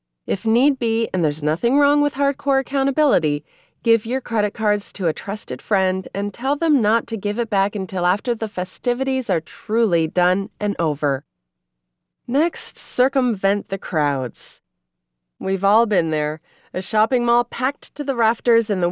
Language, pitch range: English, 180-245 Hz